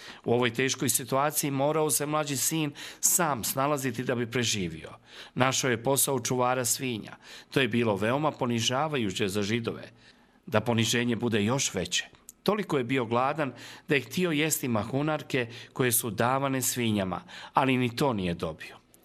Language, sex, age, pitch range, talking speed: Croatian, male, 40-59, 120-155 Hz, 150 wpm